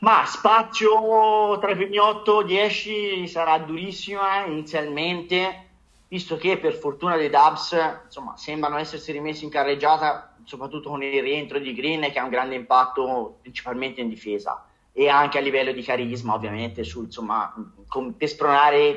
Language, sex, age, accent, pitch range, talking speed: Italian, male, 30-49, native, 135-180 Hz, 145 wpm